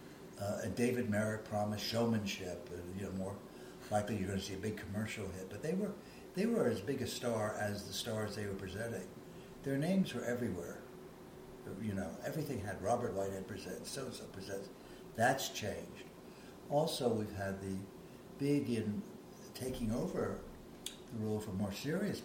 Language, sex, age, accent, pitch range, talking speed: English, male, 60-79, American, 95-120 Hz, 165 wpm